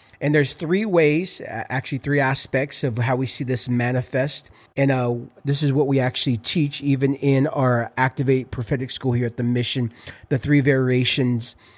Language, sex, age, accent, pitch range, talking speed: English, male, 40-59, American, 125-150 Hz, 175 wpm